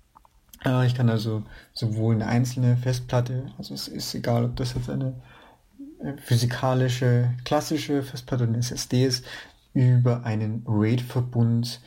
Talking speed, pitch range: 125 wpm, 115-125 Hz